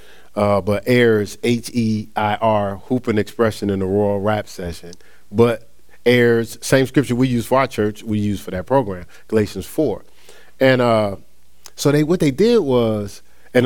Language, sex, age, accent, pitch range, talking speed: English, male, 40-59, American, 100-130 Hz, 160 wpm